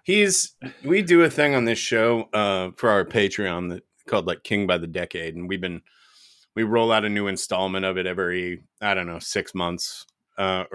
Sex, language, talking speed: male, English, 205 wpm